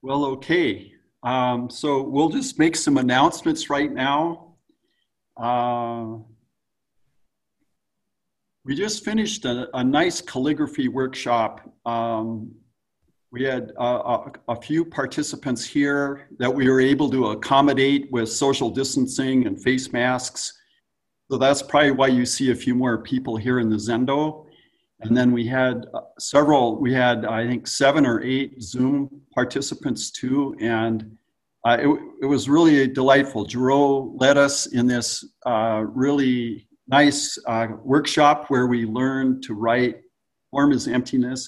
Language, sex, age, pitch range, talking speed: English, male, 50-69, 120-145 Hz, 135 wpm